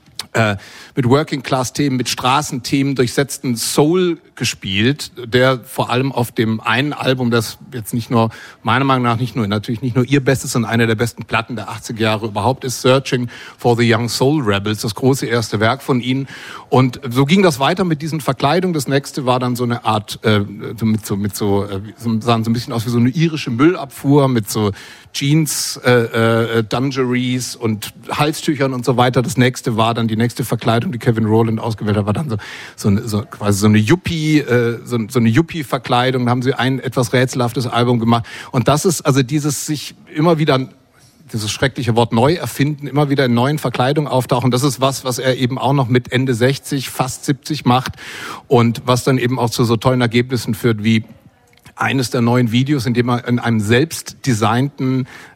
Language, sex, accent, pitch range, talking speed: German, male, German, 115-140 Hz, 195 wpm